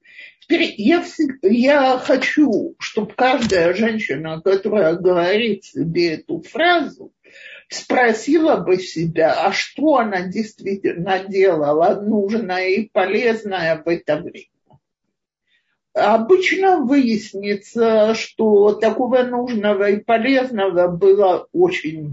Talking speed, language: 90 wpm, Russian